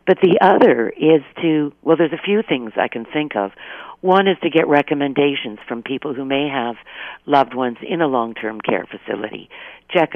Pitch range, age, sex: 130-170 Hz, 50-69, female